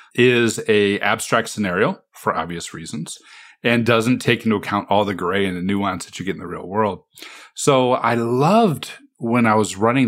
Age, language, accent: 40-59, English, American